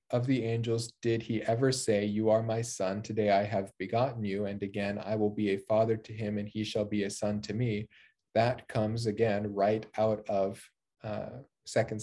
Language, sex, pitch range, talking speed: English, male, 105-115 Hz, 200 wpm